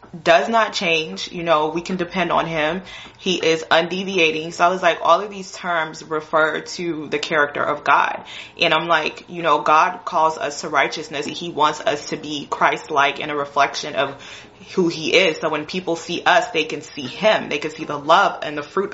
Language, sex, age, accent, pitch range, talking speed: English, female, 20-39, American, 155-190 Hz, 210 wpm